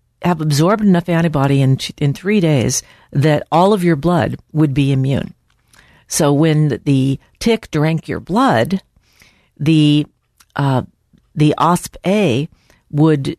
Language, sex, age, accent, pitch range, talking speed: English, female, 50-69, American, 140-170 Hz, 130 wpm